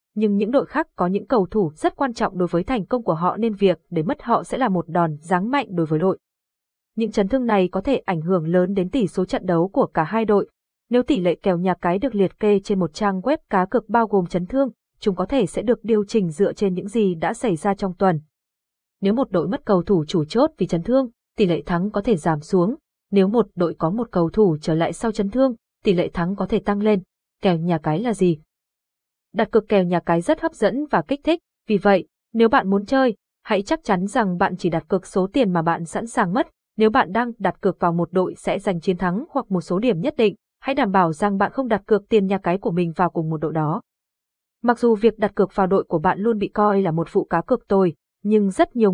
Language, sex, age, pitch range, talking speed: Vietnamese, female, 20-39, 175-230 Hz, 265 wpm